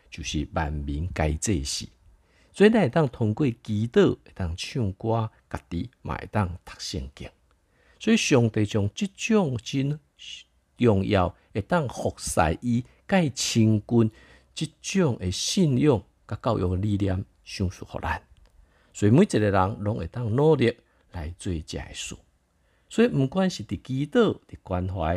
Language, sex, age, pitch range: Chinese, male, 50-69, 85-115 Hz